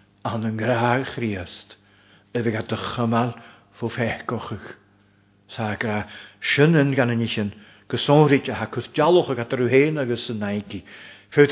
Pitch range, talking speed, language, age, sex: 105-130 Hz, 110 wpm, English, 50-69, male